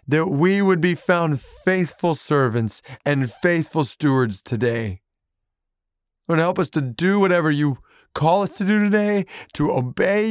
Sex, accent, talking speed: male, American, 145 wpm